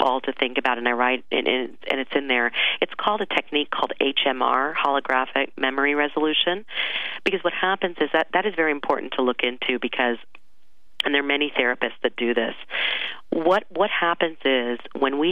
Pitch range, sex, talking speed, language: 125-150 Hz, female, 185 wpm, English